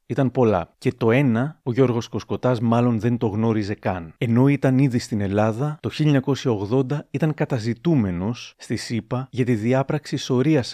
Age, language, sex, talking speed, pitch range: 30-49, Greek, male, 155 wpm, 110-130 Hz